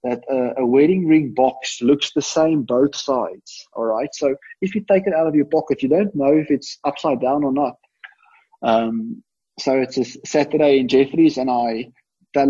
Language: English